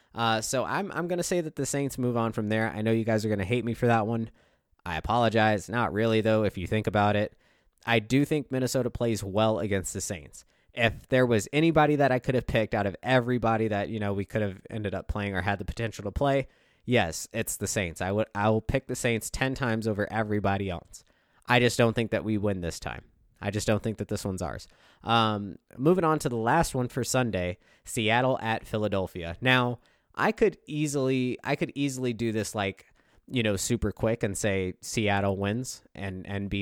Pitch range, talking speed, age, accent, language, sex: 100-125 Hz, 225 wpm, 20-39, American, English, male